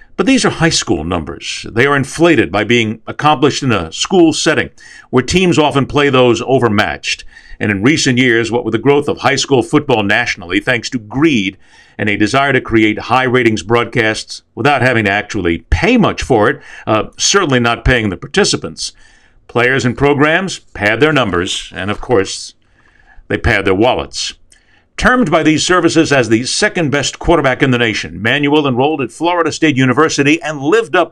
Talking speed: 180 wpm